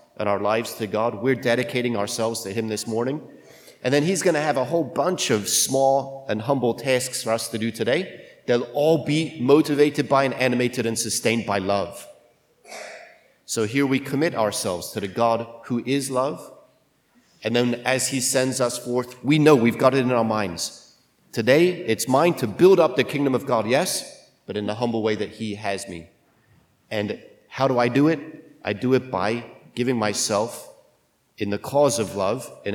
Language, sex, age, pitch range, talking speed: English, male, 30-49, 110-135 Hz, 195 wpm